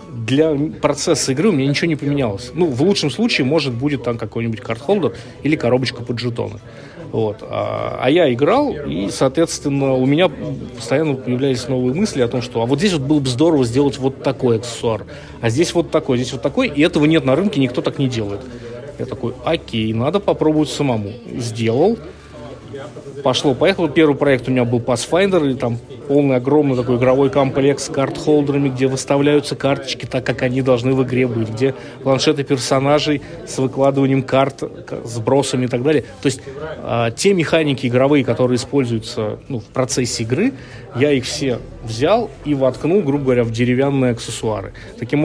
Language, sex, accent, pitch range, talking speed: Russian, male, native, 125-145 Hz, 175 wpm